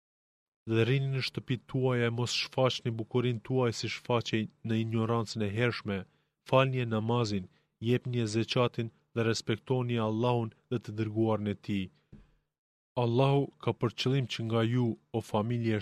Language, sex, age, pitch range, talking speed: Greek, male, 30-49, 110-125 Hz, 150 wpm